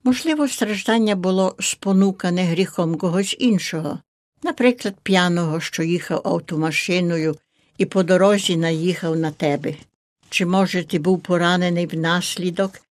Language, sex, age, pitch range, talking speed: Ukrainian, female, 60-79, 170-205 Hz, 110 wpm